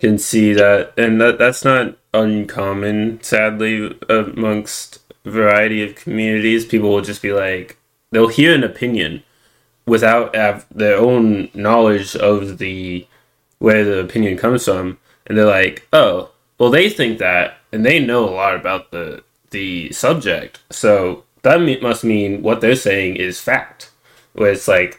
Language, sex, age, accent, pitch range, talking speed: English, male, 10-29, American, 95-115 Hz, 155 wpm